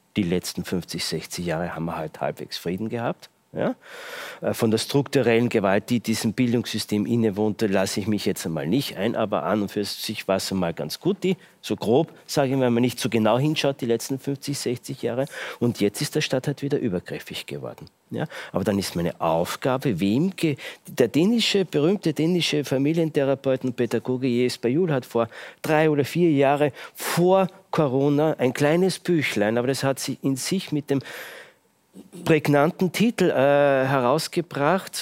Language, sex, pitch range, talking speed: German, male, 115-155 Hz, 175 wpm